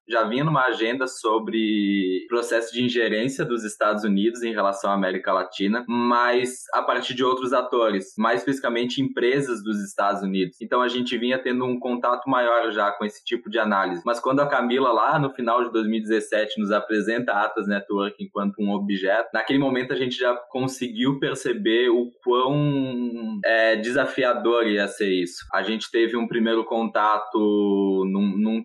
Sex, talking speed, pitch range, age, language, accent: male, 170 wpm, 105-125 Hz, 10-29, Portuguese, Brazilian